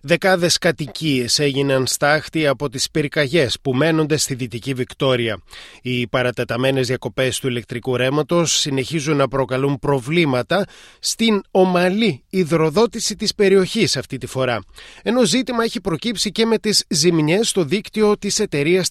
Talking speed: 135 wpm